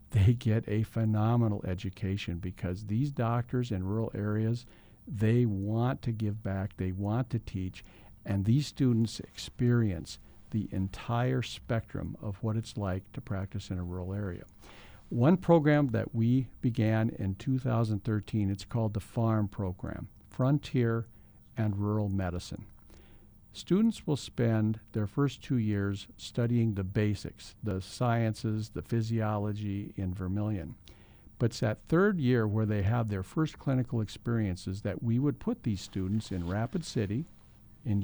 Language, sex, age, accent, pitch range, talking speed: English, male, 50-69, American, 100-120 Hz, 145 wpm